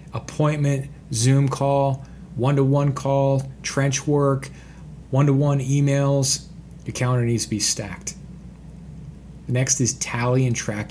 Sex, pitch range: male, 115-140 Hz